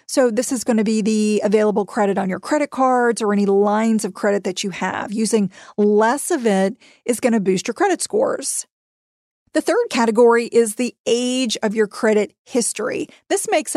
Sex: female